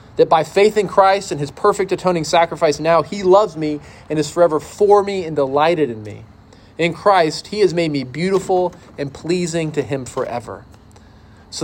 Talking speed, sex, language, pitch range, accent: 185 wpm, male, English, 120-175 Hz, American